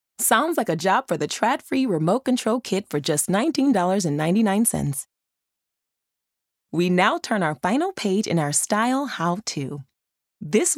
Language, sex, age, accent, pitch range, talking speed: English, female, 20-39, American, 165-250 Hz, 145 wpm